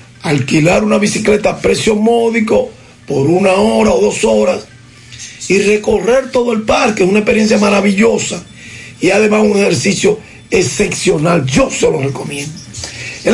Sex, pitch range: male, 150-240 Hz